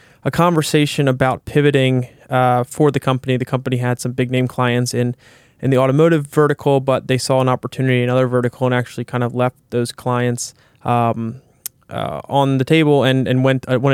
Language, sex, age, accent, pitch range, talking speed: English, male, 20-39, American, 125-145 Hz, 195 wpm